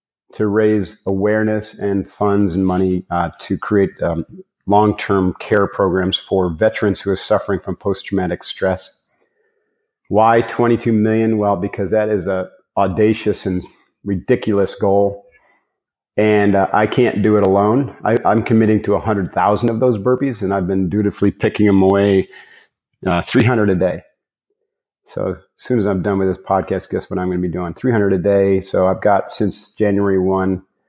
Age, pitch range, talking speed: 40-59, 95-115 Hz, 165 wpm